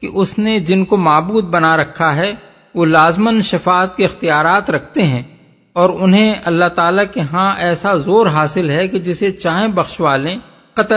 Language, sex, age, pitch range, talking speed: Urdu, male, 50-69, 160-200 Hz, 175 wpm